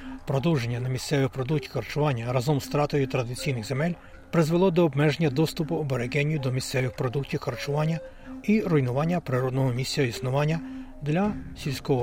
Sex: male